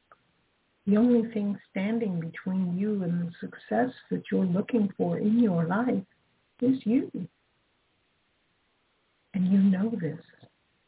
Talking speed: 120 wpm